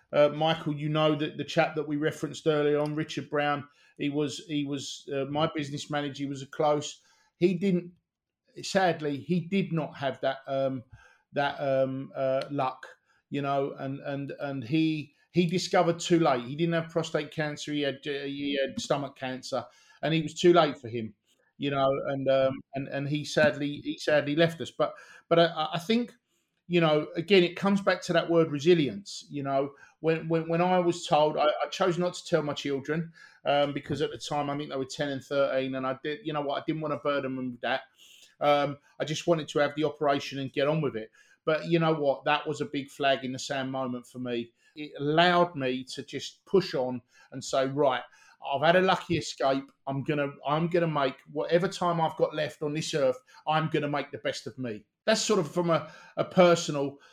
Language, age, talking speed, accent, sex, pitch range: English, 50-69, 220 wpm, British, male, 135-165 Hz